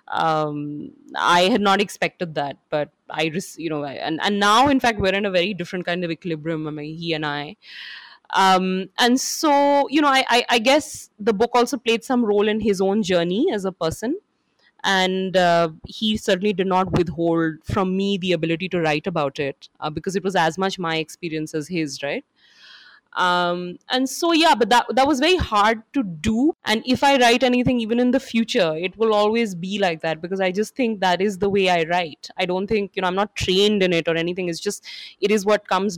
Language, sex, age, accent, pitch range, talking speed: English, female, 30-49, Indian, 170-220 Hz, 220 wpm